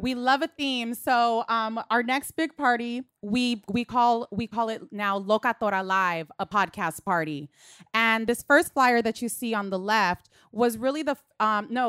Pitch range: 190-240 Hz